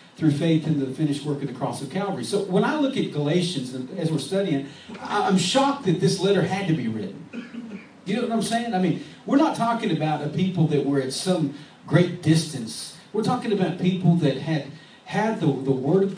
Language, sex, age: English, male, 40-59